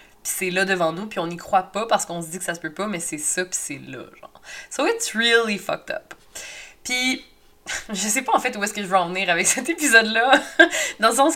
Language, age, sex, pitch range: French, 20-39, female, 170-225 Hz